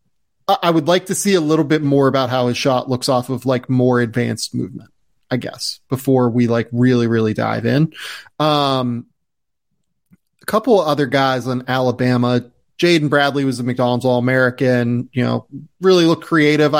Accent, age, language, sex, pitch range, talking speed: American, 30-49, English, male, 125-155 Hz, 175 wpm